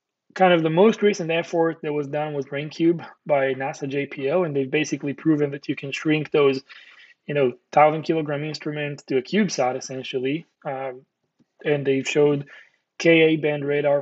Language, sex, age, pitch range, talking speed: English, male, 20-39, 135-165 Hz, 160 wpm